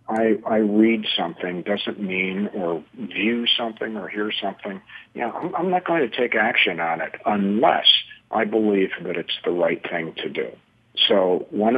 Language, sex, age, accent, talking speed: English, male, 50-69, American, 180 wpm